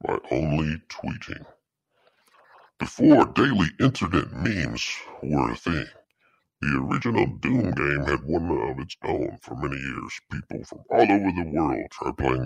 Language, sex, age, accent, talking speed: English, female, 60-79, American, 145 wpm